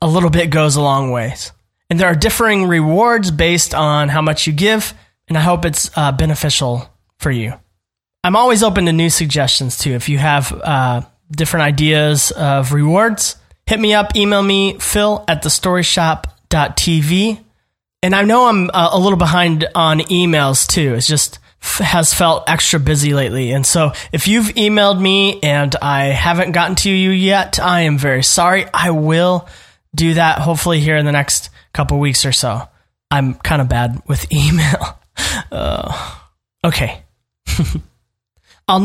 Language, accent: English, American